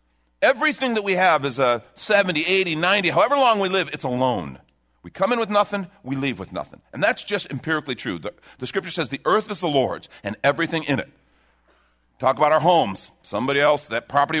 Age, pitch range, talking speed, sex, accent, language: 50-69, 130-195 Hz, 210 wpm, male, American, English